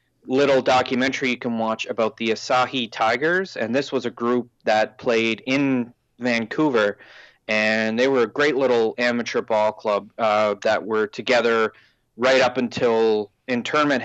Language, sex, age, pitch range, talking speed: English, male, 20-39, 110-140 Hz, 150 wpm